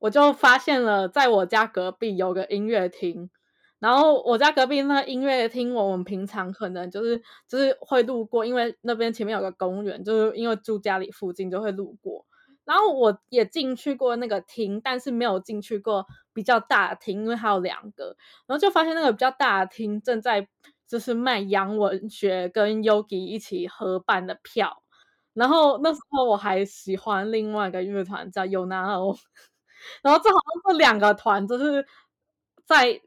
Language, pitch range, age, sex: Chinese, 200-255 Hz, 20-39, female